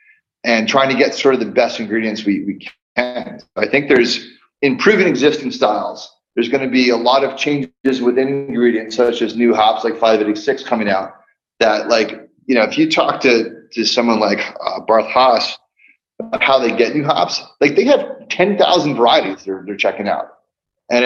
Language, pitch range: English, 120-175 Hz